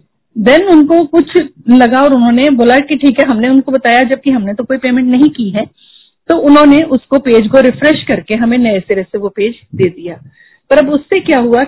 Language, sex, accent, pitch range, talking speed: Hindi, female, native, 210-275 Hz, 210 wpm